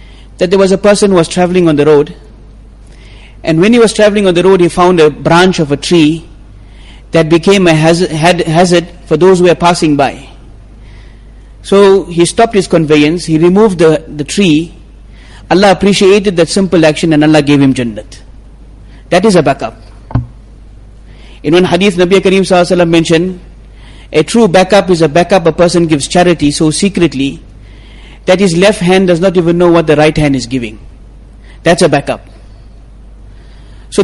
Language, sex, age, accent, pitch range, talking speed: English, male, 30-49, Indian, 120-185 Hz, 175 wpm